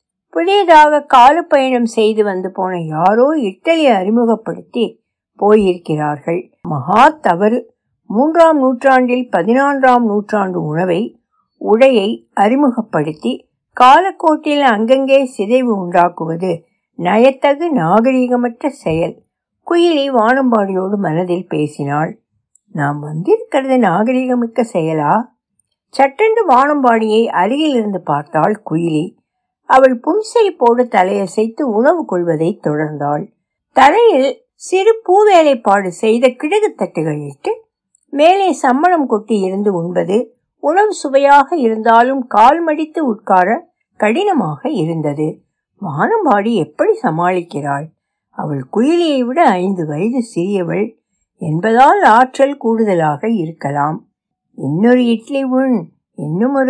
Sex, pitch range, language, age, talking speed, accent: female, 180-270 Hz, Tamil, 60-79, 70 wpm, native